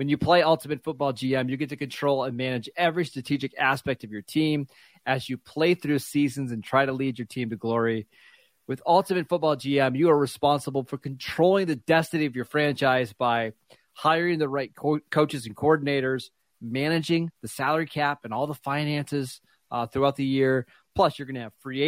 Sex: male